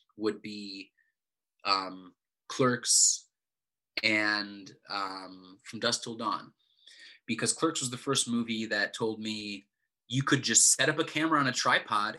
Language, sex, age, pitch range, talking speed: English, male, 30-49, 105-130 Hz, 145 wpm